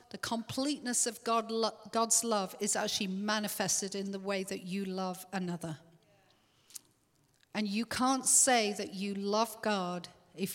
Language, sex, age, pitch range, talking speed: English, female, 40-59, 185-215 Hz, 135 wpm